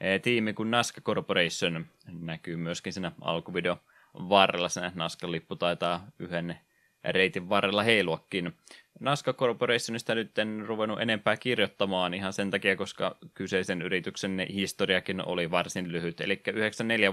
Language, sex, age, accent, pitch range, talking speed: Finnish, male, 20-39, native, 90-105 Hz, 125 wpm